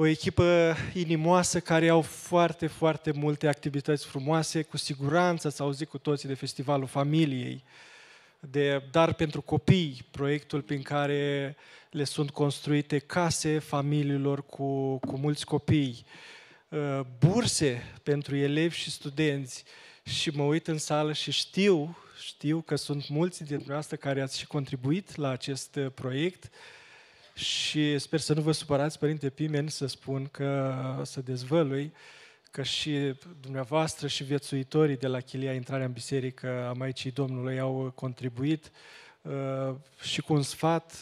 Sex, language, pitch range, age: male, Romanian, 135-155 Hz, 20-39